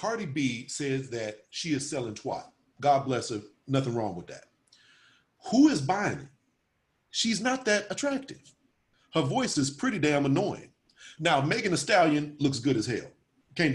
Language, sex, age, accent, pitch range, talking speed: English, male, 40-59, American, 125-155 Hz, 165 wpm